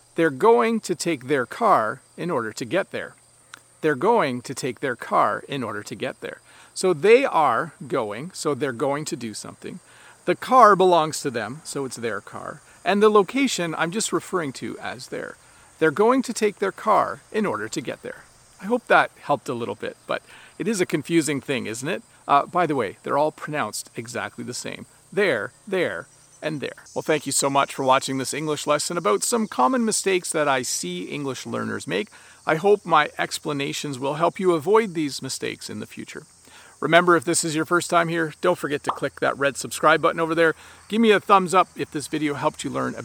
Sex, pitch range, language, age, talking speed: male, 145-185 Hz, English, 40-59, 215 wpm